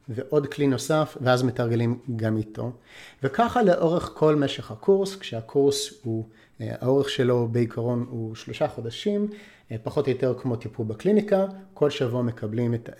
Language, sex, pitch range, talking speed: Hebrew, male, 115-145 Hz, 135 wpm